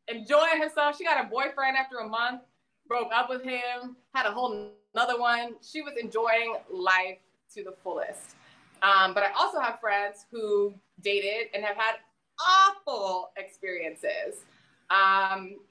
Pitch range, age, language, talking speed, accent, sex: 195-245 Hz, 20-39, English, 150 wpm, American, female